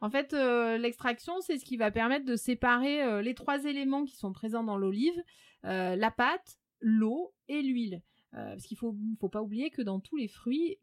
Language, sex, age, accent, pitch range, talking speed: French, female, 30-49, French, 215-290 Hz, 205 wpm